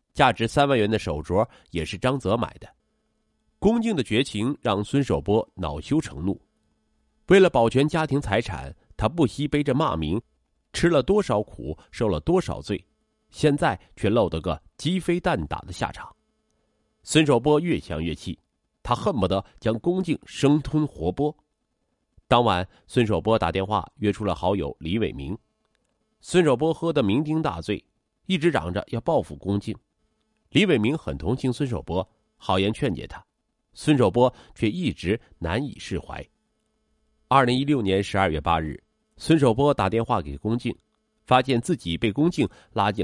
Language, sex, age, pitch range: Chinese, male, 30-49, 95-140 Hz